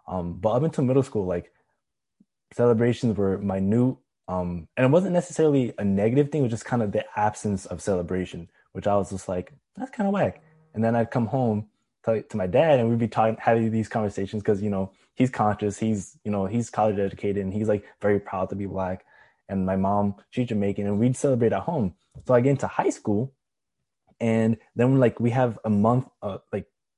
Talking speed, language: 215 wpm, English